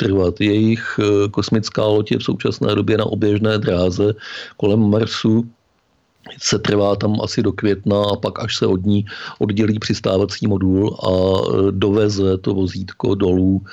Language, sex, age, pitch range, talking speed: Czech, male, 50-69, 100-110 Hz, 145 wpm